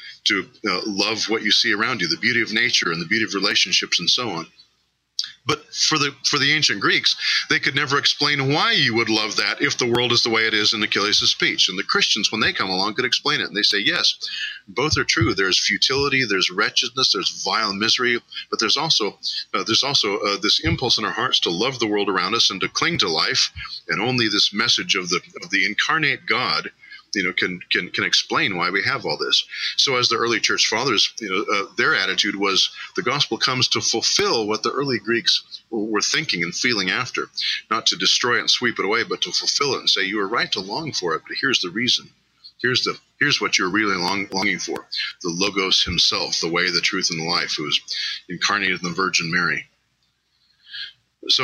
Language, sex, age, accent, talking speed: English, male, 40-59, American, 225 wpm